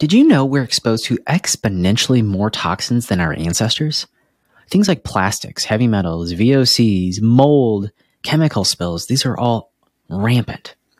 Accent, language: American, English